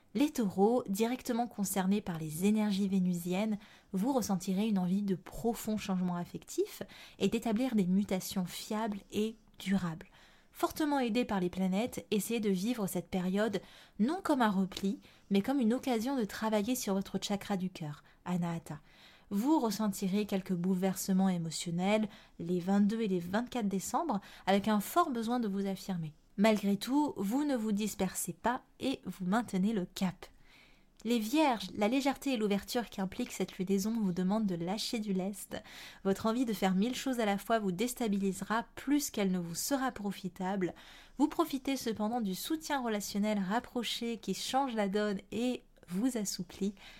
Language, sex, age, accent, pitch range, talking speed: French, female, 20-39, French, 190-235 Hz, 160 wpm